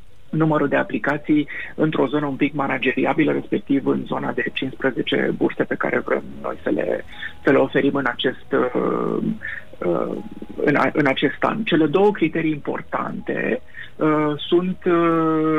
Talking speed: 125 wpm